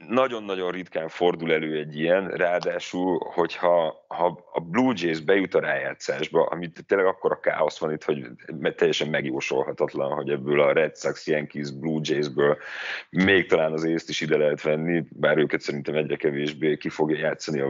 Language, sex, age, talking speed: Hungarian, male, 30-49, 165 wpm